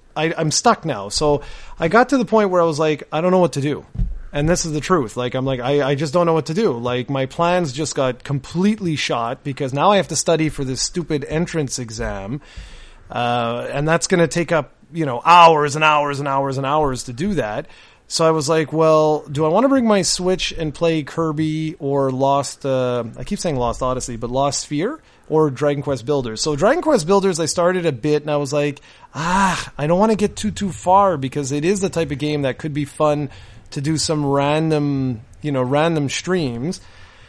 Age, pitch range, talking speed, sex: 30-49, 135-170 Hz, 225 wpm, male